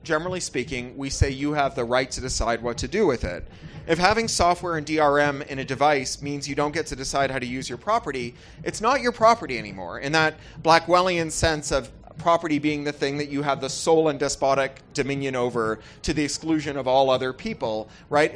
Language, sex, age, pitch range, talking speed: English, male, 30-49, 135-160 Hz, 210 wpm